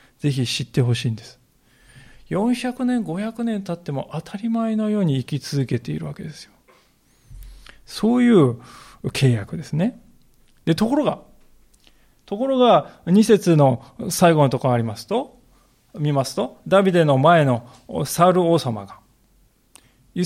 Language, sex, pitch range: Japanese, male, 135-205 Hz